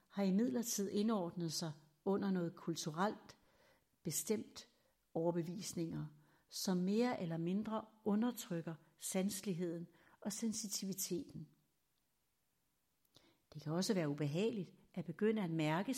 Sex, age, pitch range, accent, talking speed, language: female, 60-79, 165-205 Hz, native, 100 wpm, Danish